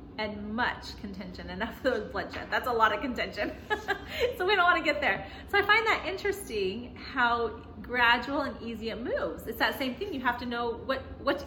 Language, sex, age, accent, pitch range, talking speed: English, female, 30-49, American, 235-315 Hz, 195 wpm